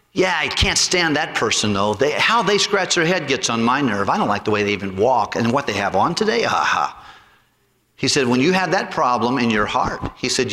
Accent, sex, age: American, male, 50-69